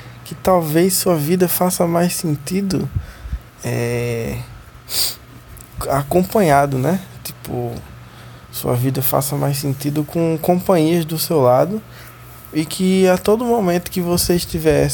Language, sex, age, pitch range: Portuguese, male, 20-39, 130-170 Hz